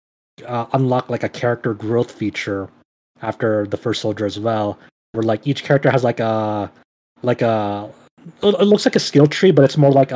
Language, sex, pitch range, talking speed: English, male, 105-125 Hz, 190 wpm